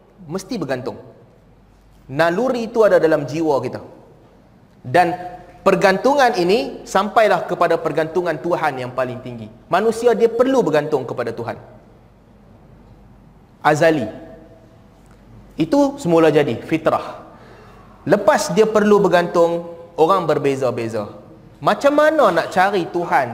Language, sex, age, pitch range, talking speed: Malay, male, 30-49, 155-215 Hz, 105 wpm